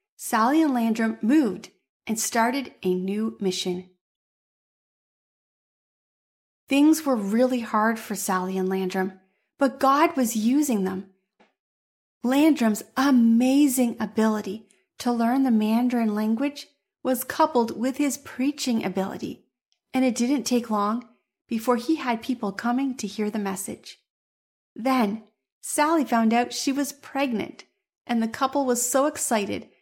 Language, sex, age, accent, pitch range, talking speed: English, female, 30-49, American, 215-265 Hz, 125 wpm